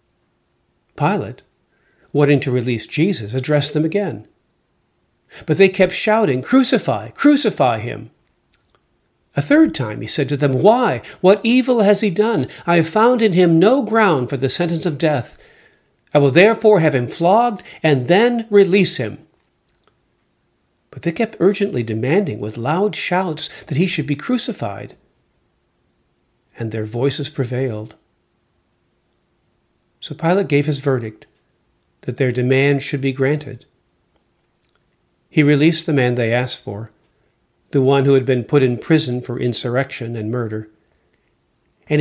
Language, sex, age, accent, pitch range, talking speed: English, male, 50-69, American, 125-180 Hz, 140 wpm